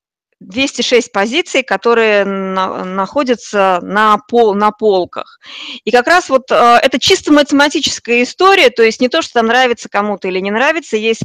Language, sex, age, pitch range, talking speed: Russian, female, 20-39, 200-270 Hz, 150 wpm